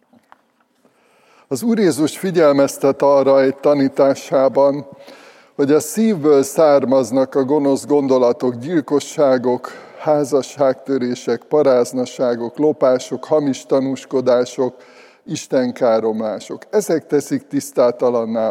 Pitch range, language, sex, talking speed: 125-150 Hz, Hungarian, male, 80 wpm